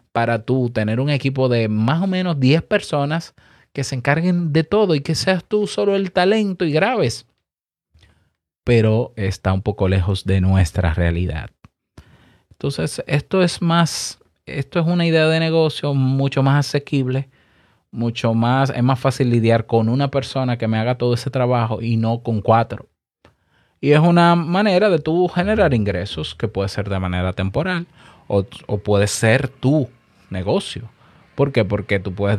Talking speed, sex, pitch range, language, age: 165 wpm, male, 115-160 Hz, Spanish, 30-49